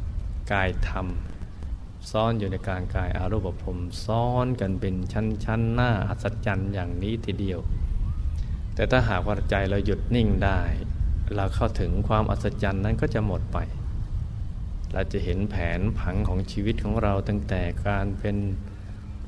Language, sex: Thai, male